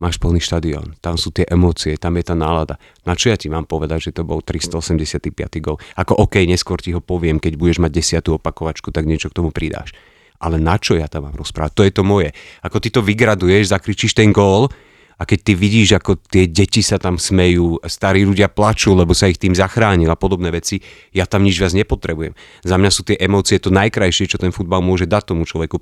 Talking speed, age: 225 wpm, 30-49